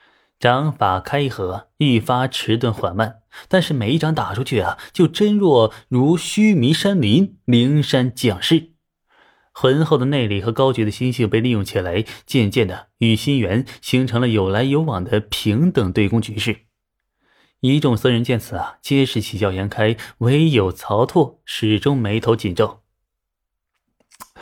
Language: Chinese